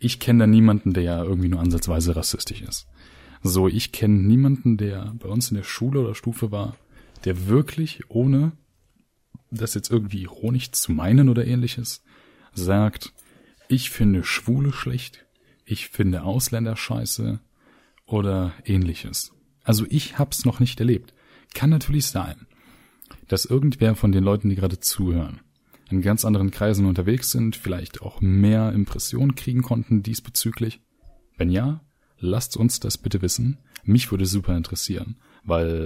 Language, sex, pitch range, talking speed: German, male, 95-125 Hz, 145 wpm